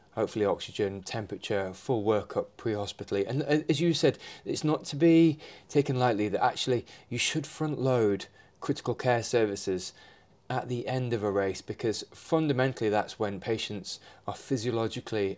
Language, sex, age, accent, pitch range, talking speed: English, male, 20-39, British, 105-135 Hz, 150 wpm